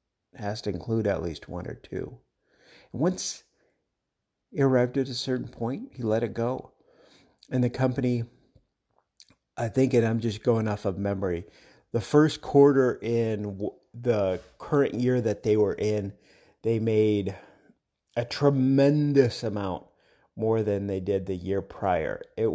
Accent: American